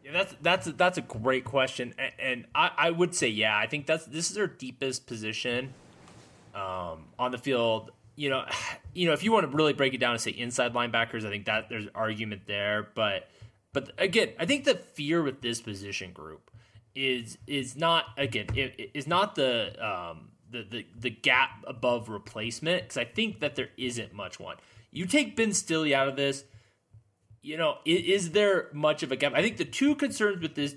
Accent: American